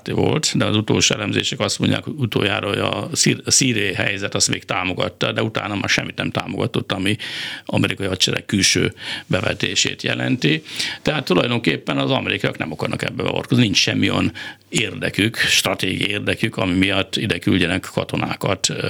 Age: 60-79